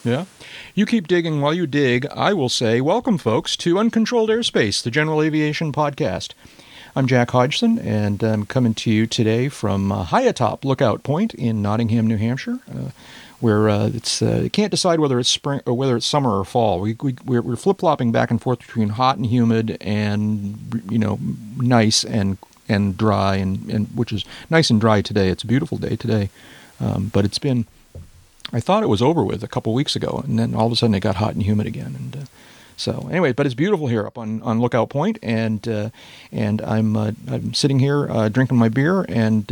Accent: American